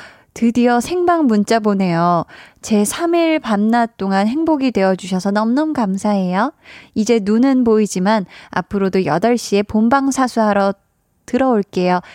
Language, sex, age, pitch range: Korean, female, 20-39, 190-250 Hz